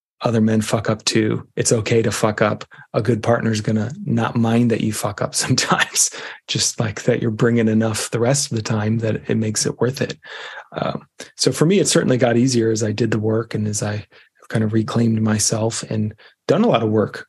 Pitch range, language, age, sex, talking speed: 110-140 Hz, English, 30-49, male, 230 wpm